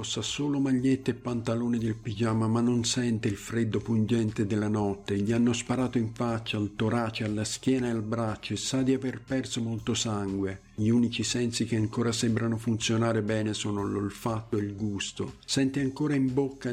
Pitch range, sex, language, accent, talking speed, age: 110-125 Hz, male, Italian, native, 185 wpm, 50-69